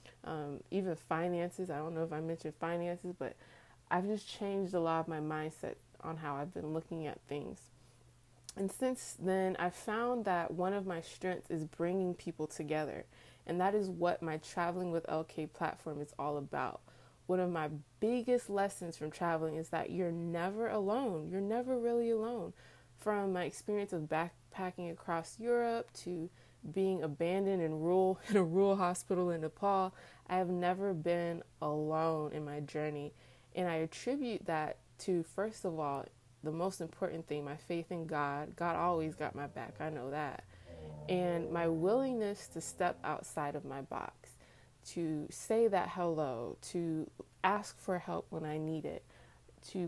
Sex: female